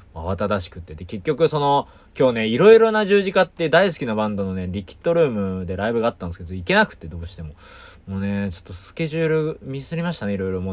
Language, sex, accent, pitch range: Japanese, male, native, 95-155 Hz